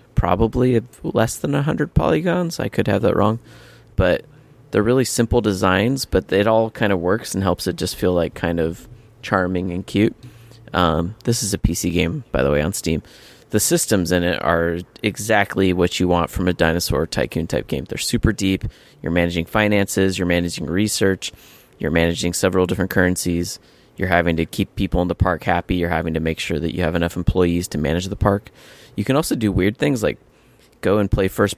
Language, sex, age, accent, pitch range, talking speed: English, male, 20-39, American, 85-105 Hz, 205 wpm